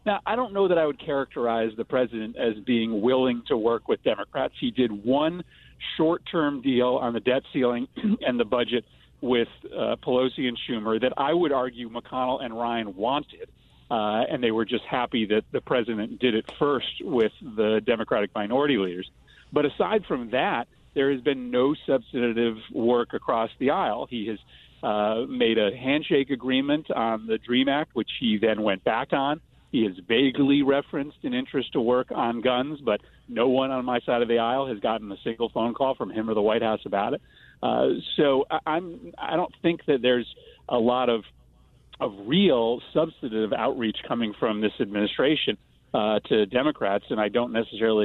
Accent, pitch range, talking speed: American, 110-140 Hz, 185 wpm